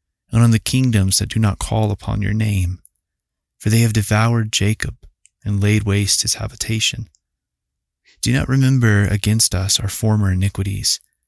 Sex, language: male, English